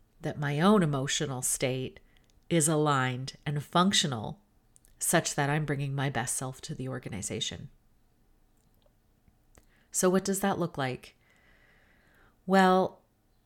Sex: female